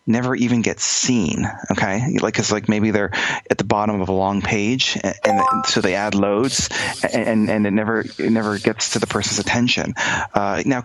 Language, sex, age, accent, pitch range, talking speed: English, male, 30-49, American, 105-125 Hz, 205 wpm